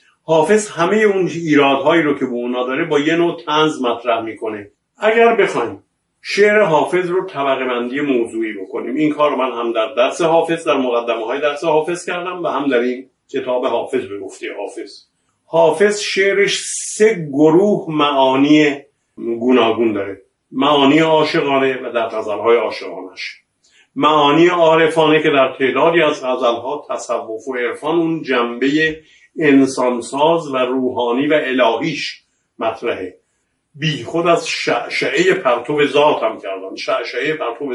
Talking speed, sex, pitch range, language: 135 wpm, male, 120-165 Hz, Persian